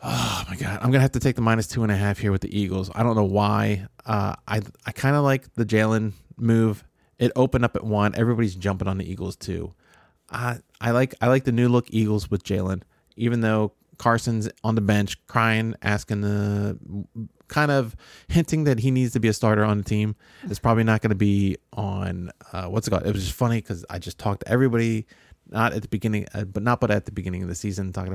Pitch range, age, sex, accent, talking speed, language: 95-120 Hz, 20-39, male, American, 240 wpm, English